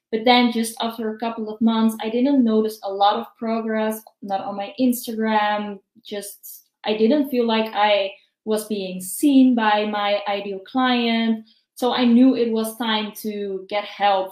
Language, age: English, 20-39